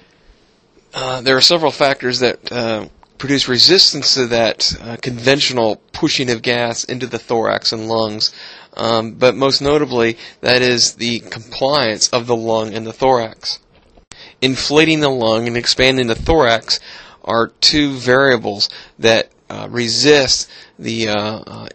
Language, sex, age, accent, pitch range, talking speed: English, male, 30-49, American, 115-135 Hz, 140 wpm